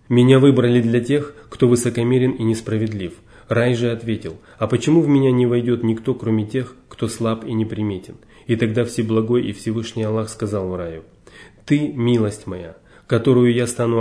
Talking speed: 165 wpm